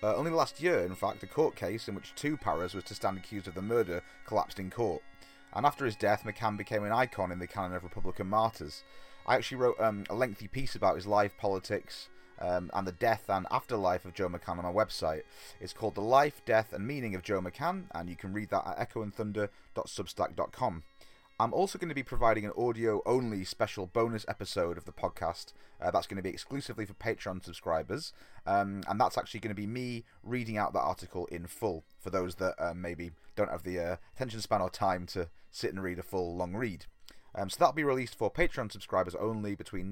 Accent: British